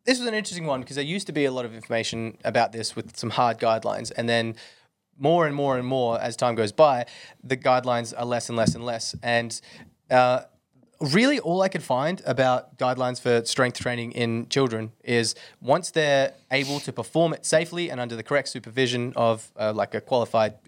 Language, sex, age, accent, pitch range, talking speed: English, male, 20-39, Australian, 120-150 Hz, 205 wpm